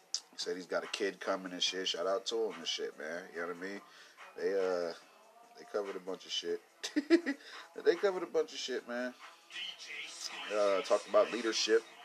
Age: 30-49